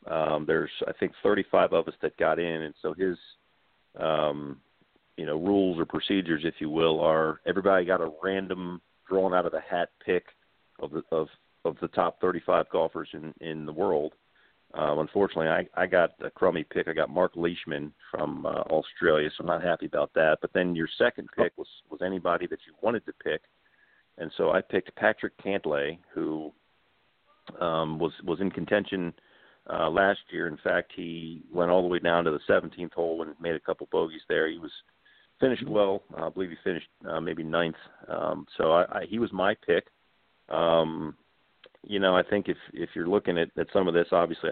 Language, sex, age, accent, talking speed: English, male, 40-59, American, 195 wpm